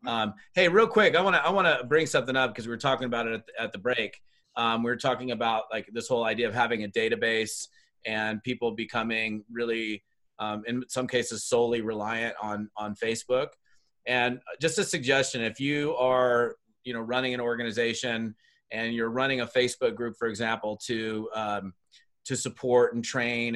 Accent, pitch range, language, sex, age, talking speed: American, 115-145 Hz, English, male, 30-49, 190 wpm